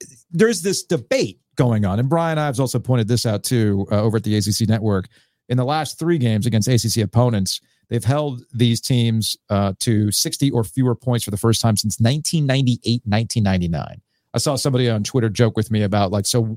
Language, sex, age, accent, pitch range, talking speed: English, male, 40-59, American, 110-135 Hz, 200 wpm